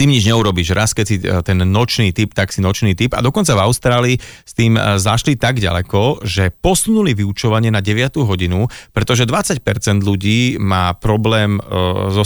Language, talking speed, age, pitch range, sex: Slovak, 165 wpm, 30-49, 100-120 Hz, male